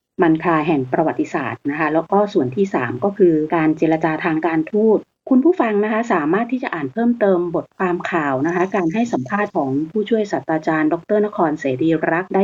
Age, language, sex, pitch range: 30-49, Thai, female, 155-195 Hz